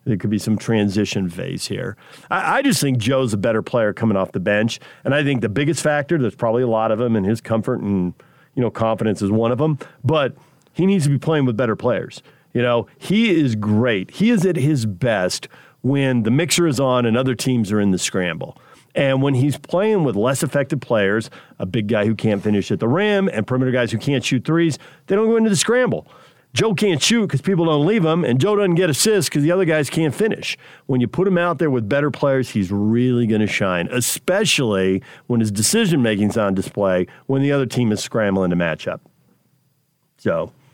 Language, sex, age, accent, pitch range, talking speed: English, male, 50-69, American, 110-160 Hz, 225 wpm